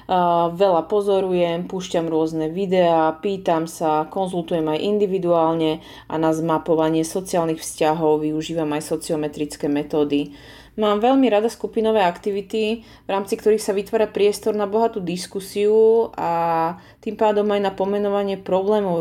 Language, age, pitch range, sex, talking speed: Slovak, 30-49, 175-215 Hz, female, 125 wpm